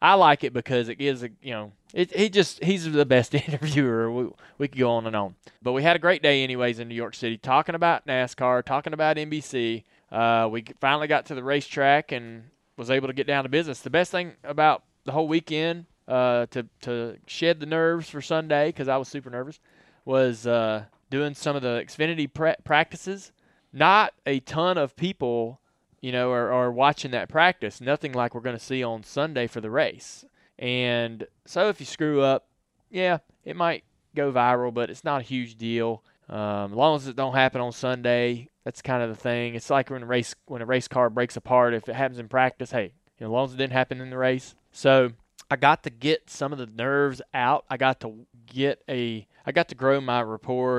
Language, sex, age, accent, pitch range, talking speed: English, male, 20-39, American, 120-145 Hz, 220 wpm